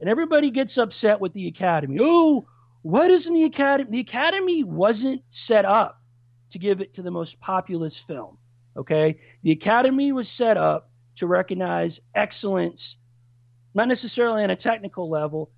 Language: English